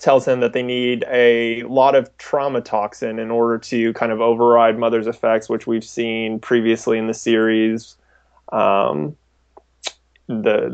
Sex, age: male, 20-39